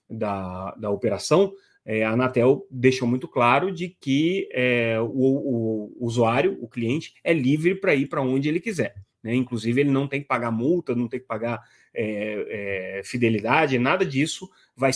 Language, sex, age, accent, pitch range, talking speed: Portuguese, male, 30-49, Brazilian, 115-140 Hz, 155 wpm